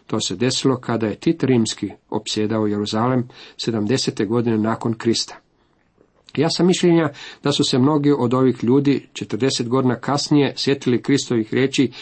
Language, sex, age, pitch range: Croatian, male, 50-69, 110-135 Hz